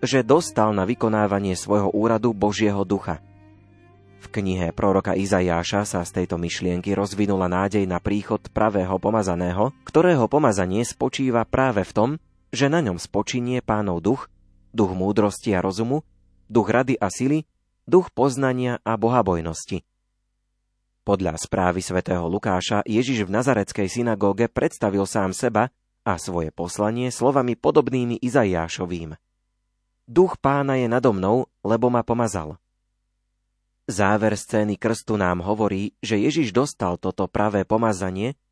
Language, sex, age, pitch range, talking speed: Slovak, male, 30-49, 95-120 Hz, 130 wpm